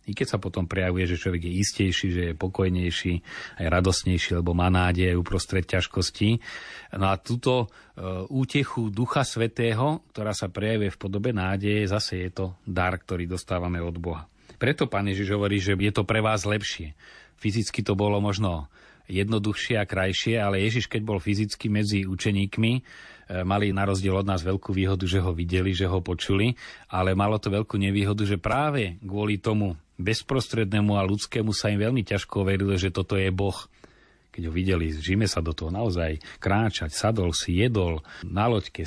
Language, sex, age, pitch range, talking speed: Slovak, male, 30-49, 90-115 Hz, 170 wpm